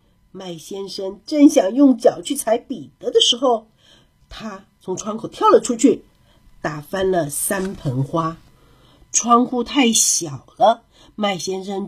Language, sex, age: Chinese, female, 50-69